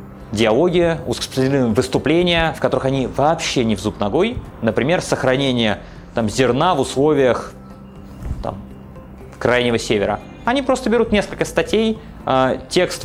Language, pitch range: Russian, 120-185 Hz